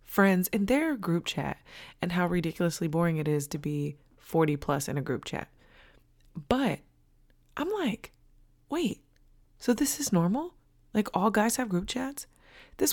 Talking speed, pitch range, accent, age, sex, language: 160 wpm, 150-230 Hz, American, 20-39, female, English